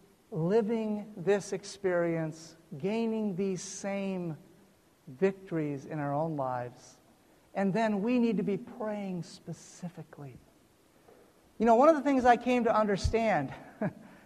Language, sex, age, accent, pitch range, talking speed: English, male, 50-69, American, 190-250 Hz, 120 wpm